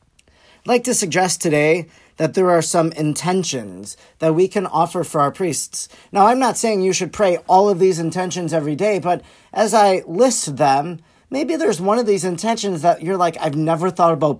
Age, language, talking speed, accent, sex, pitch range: 40-59, English, 200 wpm, American, male, 155-195 Hz